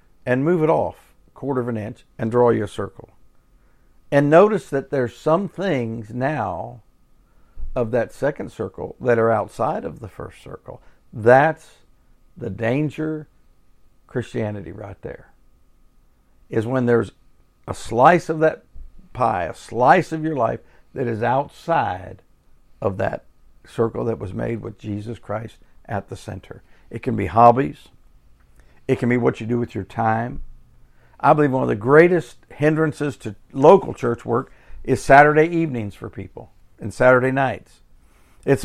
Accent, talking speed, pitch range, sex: American, 150 wpm, 100-150 Hz, male